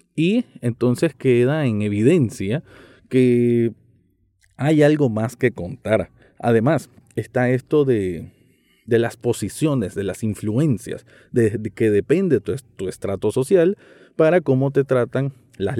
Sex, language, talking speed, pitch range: male, Spanish, 130 wpm, 105-140 Hz